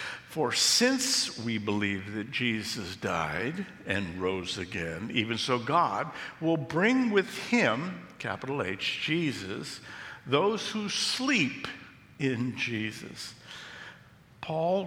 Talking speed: 105 wpm